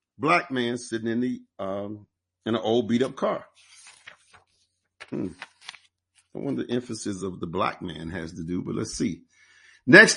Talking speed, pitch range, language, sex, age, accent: 165 wpm, 105-150 Hz, English, male, 50-69, American